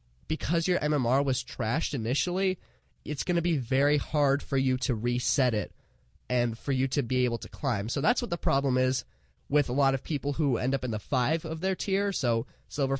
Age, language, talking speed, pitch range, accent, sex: 20-39, English, 215 wpm, 115-145 Hz, American, male